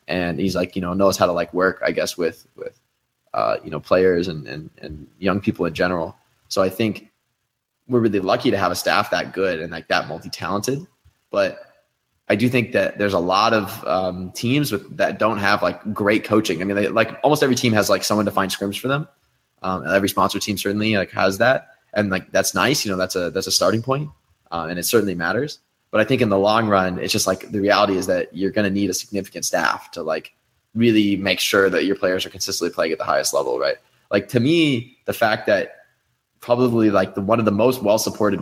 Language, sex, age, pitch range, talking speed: English, male, 20-39, 95-110 Hz, 235 wpm